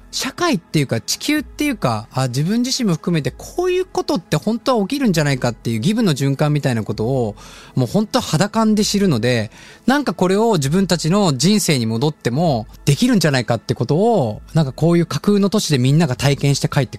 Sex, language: male, Japanese